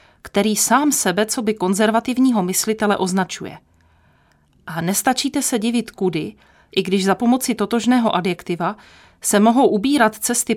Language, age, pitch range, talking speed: Czech, 30-49, 185-235 Hz, 130 wpm